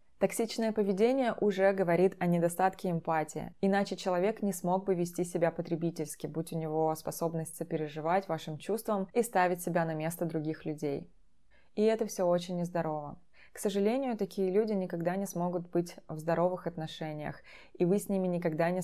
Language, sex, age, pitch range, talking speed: Russian, female, 20-39, 165-195 Hz, 160 wpm